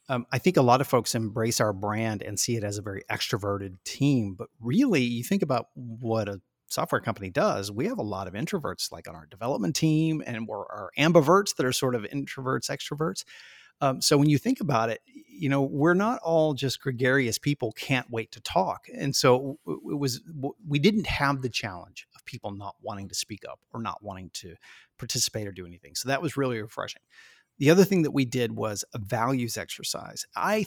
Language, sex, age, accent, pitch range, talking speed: English, male, 30-49, American, 110-140 Hz, 210 wpm